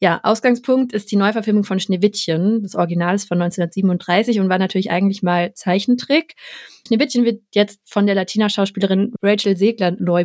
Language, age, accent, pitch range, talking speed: German, 20-39, German, 190-230 Hz, 160 wpm